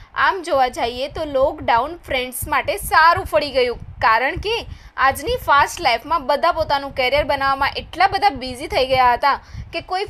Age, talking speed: 20-39, 150 wpm